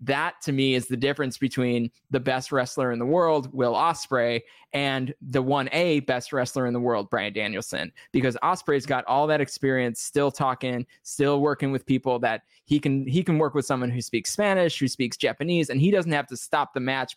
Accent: American